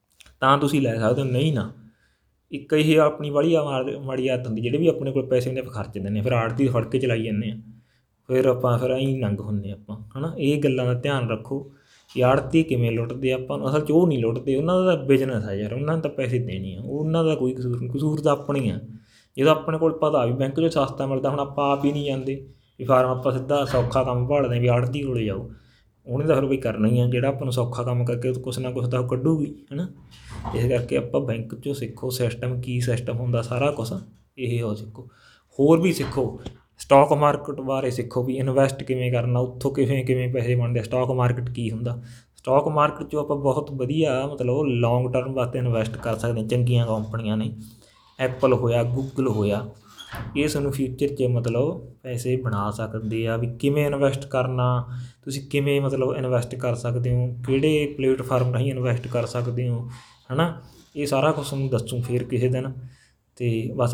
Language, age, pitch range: Punjabi, 20-39, 120-135 Hz